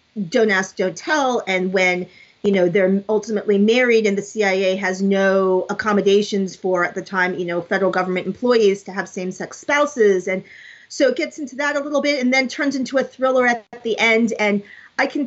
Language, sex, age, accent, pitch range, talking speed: English, female, 40-59, American, 200-260 Hz, 210 wpm